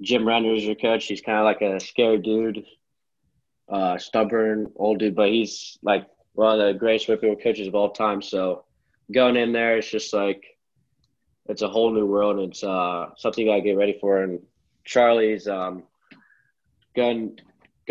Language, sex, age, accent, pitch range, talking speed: English, male, 20-39, American, 100-110 Hz, 185 wpm